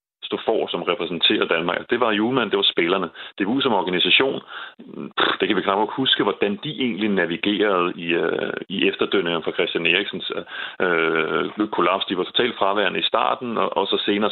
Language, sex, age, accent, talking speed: Danish, male, 30-49, native, 185 wpm